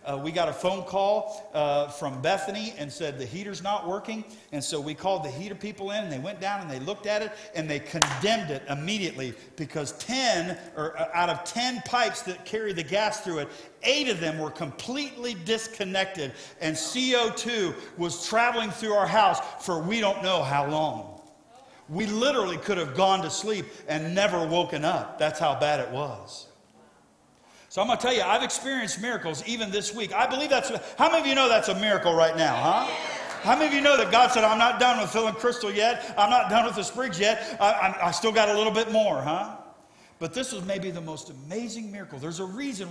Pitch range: 160-220 Hz